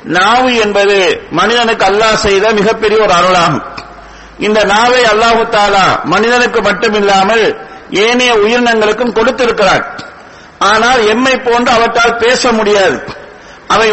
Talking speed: 135 wpm